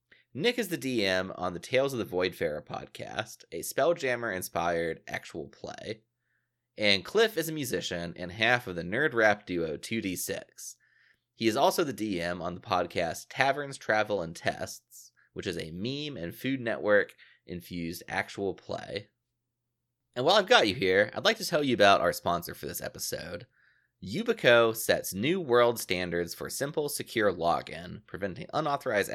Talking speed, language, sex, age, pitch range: 160 wpm, English, male, 30-49, 90-135 Hz